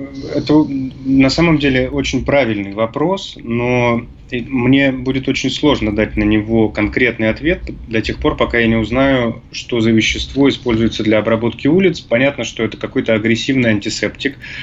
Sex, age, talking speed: male, 20-39, 150 wpm